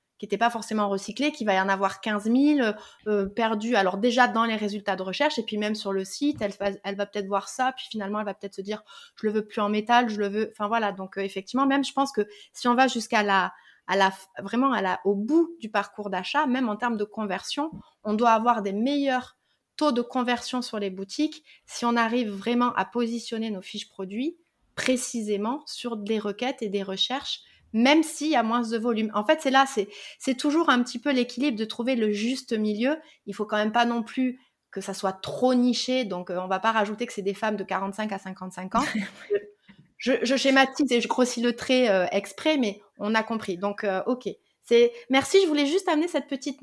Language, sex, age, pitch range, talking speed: French, female, 30-49, 210-260 Hz, 235 wpm